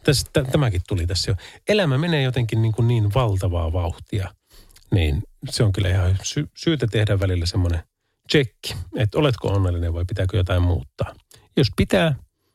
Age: 30-49